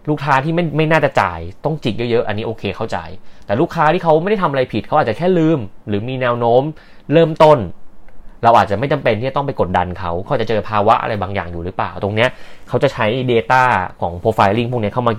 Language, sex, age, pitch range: Thai, male, 20-39, 100-130 Hz